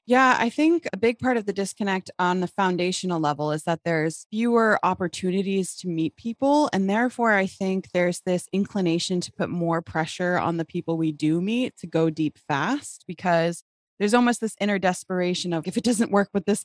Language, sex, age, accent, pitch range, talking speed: English, female, 20-39, American, 165-205 Hz, 200 wpm